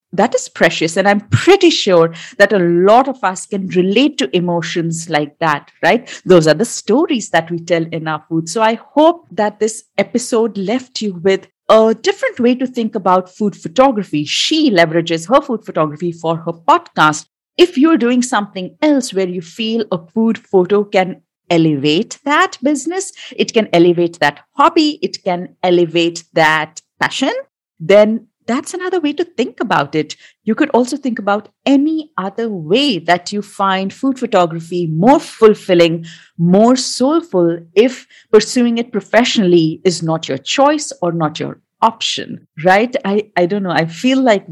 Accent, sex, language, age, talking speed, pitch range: Indian, female, English, 50-69, 165 wpm, 170-240 Hz